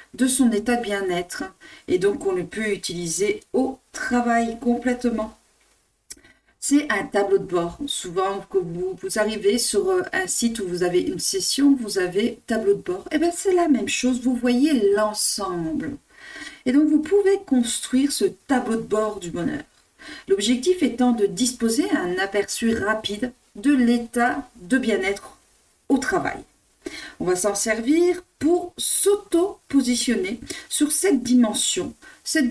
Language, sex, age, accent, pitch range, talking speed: French, female, 40-59, French, 215-315 Hz, 145 wpm